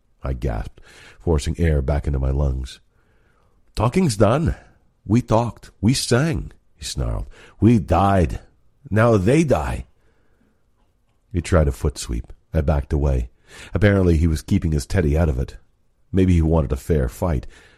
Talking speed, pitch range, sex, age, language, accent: 145 wpm, 75-100 Hz, male, 50-69, English, American